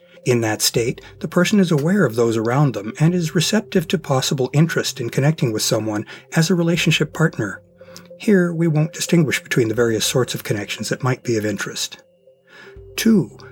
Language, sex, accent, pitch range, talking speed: English, male, American, 115-165 Hz, 180 wpm